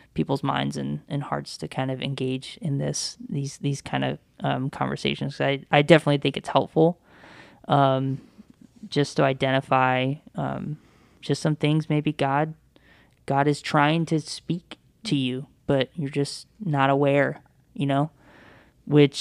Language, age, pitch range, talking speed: English, 20-39, 135-160 Hz, 155 wpm